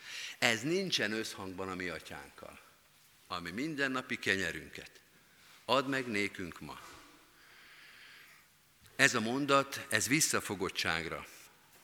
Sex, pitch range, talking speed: male, 95-130 Hz, 90 wpm